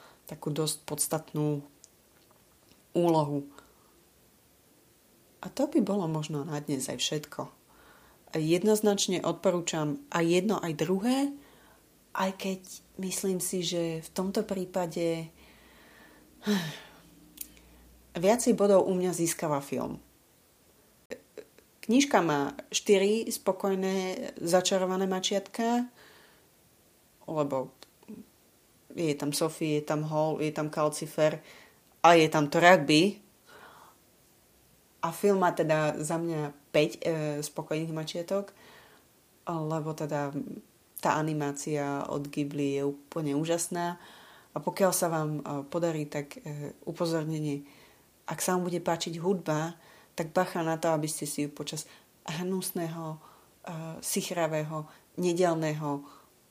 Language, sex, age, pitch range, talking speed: English, female, 30-49, 150-185 Hz, 105 wpm